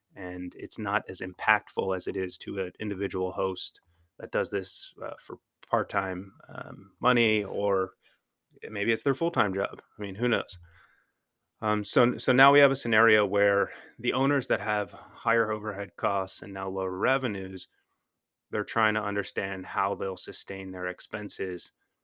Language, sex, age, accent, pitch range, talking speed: English, male, 30-49, American, 95-105 Hz, 160 wpm